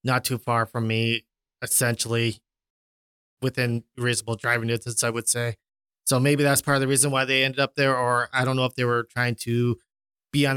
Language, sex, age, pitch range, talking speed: English, male, 20-39, 120-140 Hz, 205 wpm